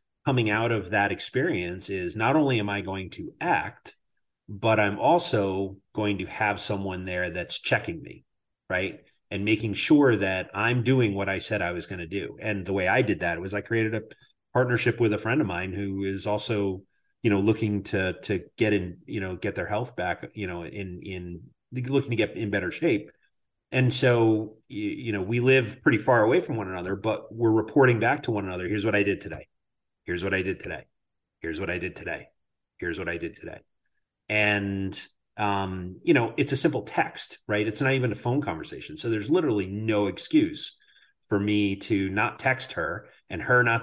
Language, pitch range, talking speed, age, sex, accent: English, 95-115 Hz, 205 wpm, 30-49, male, American